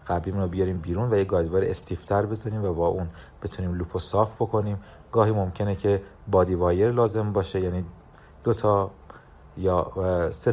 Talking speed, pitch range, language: 155 wpm, 90-105 Hz, Persian